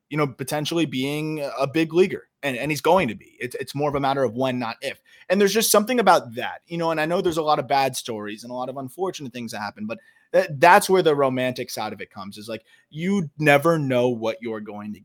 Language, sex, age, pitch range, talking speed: English, male, 20-39, 115-150 Hz, 265 wpm